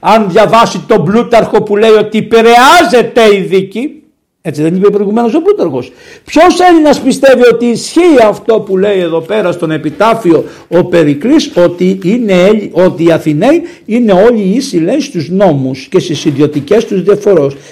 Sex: male